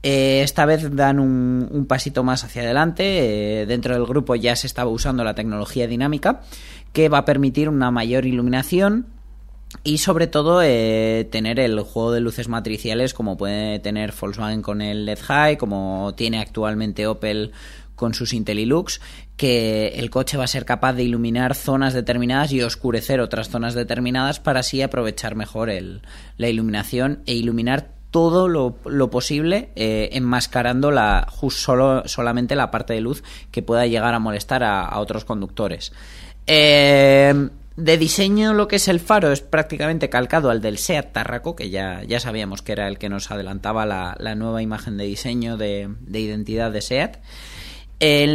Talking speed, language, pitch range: 170 wpm, Spanish, 110-140 Hz